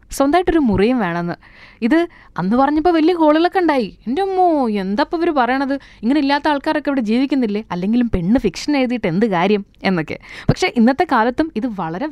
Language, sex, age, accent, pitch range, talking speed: Malayalam, female, 20-39, native, 215-305 Hz, 155 wpm